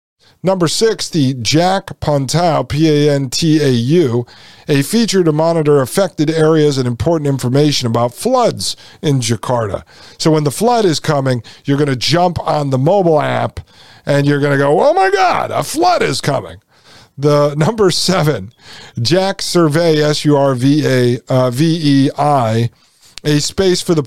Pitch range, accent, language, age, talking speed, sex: 135-175 Hz, American, English, 50-69, 155 wpm, male